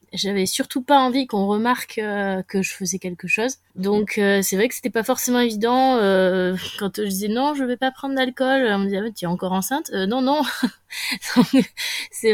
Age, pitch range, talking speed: 20-39, 185-230 Hz, 205 wpm